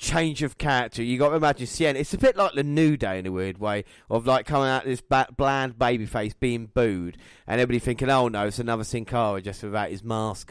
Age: 30-49